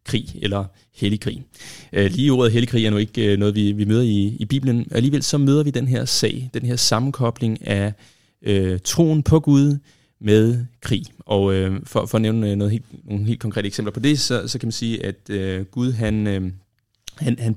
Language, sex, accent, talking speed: Danish, male, native, 200 wpm